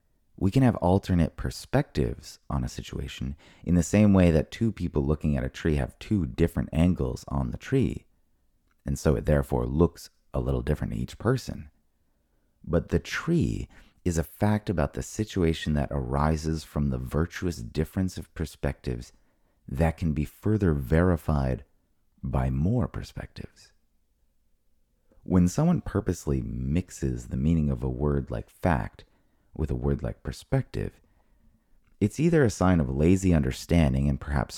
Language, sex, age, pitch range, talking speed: English, male, 30-49, 70-90 Hz, 150 wpm